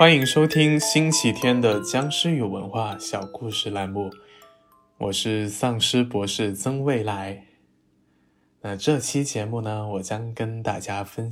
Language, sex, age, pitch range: Chinese, male, 20-39, 100-130 Hz